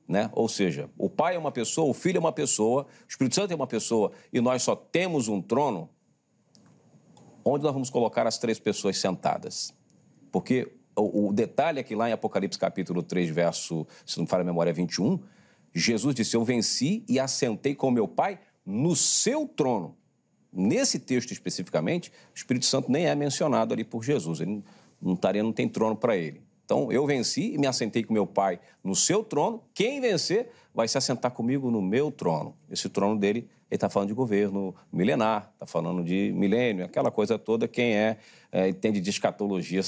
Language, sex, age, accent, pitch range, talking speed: Portuguese, male, 50-69, Brazilian, 100-135 Hz, 195 wpm